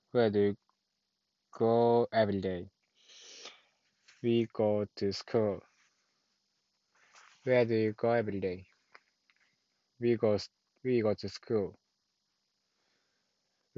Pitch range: 105-120 Hz